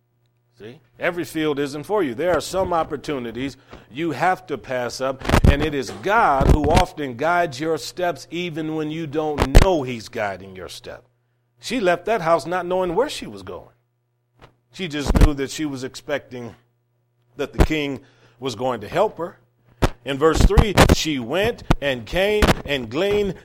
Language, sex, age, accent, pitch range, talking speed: English, male, 40-59, American, 120-160 Hz, 170 wpm